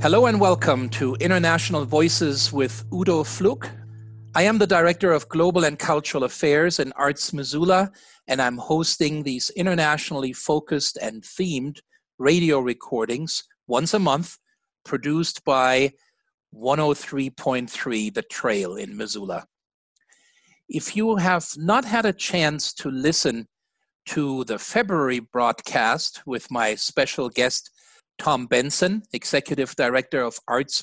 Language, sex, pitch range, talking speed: English, male, 130-175 Hz, 125 wpm